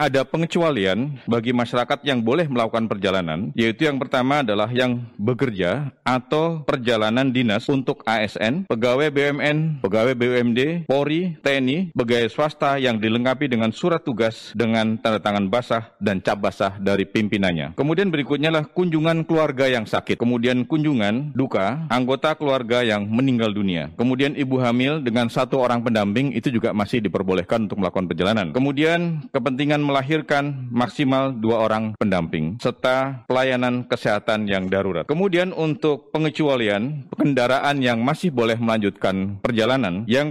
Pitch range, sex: 115-145 Hz, male